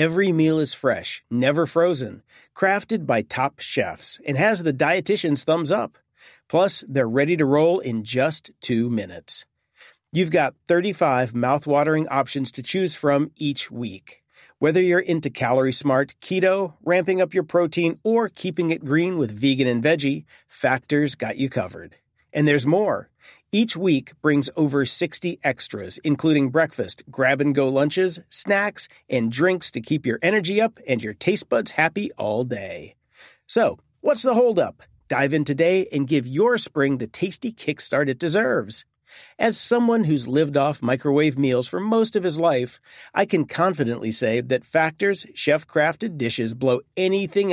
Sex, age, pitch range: male, 40-59, 135-180 Hz